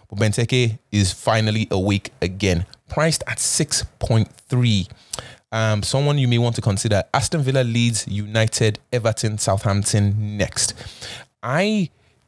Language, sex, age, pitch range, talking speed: English, male, 20-39, 105-130 Hz, 115 wpm